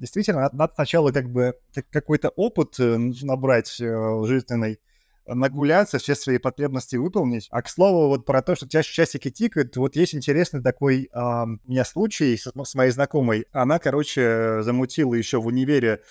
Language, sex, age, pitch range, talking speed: Russian, male, 20-39, 120-155 Hz, 155 wpm